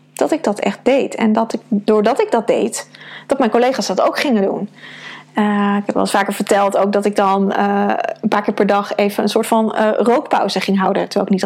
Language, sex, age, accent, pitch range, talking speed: Dutch, female, 20-39, Dutch, 200-230 Hz, 245 wpm